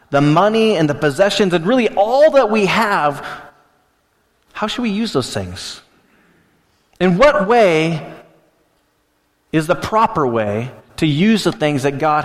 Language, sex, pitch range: English, male, 135-205 Hz